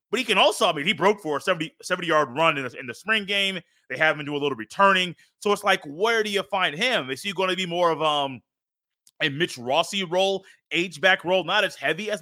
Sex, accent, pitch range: male, American, 155-215 Hz